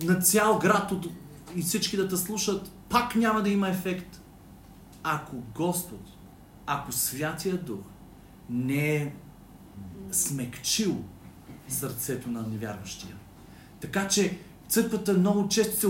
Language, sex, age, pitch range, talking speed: Bulgarian, male, 40-59, 155-195 Hz, 115 wpm